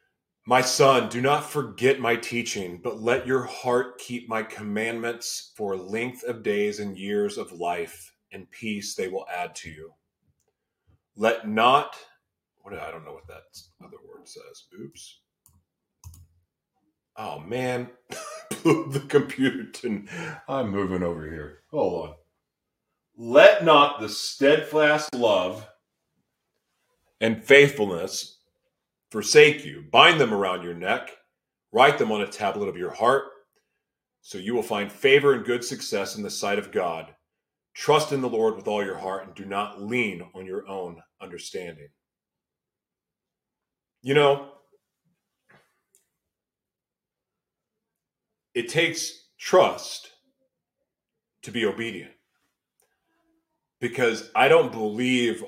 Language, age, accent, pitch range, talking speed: English, 40-59, American, 105-145 Hz, 125 wpm